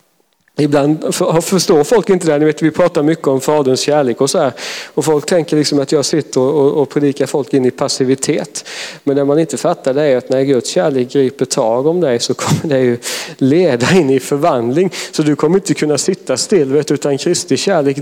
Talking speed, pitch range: 210 wpm, 140-180 Hz